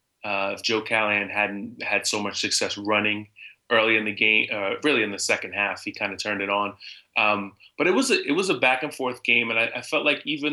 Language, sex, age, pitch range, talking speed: English, male, 20-39, 105-115 Hz, 230 wpm